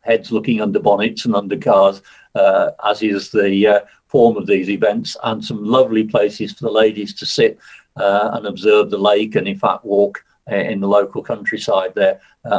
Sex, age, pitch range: male, 50-69, 105-125 Hz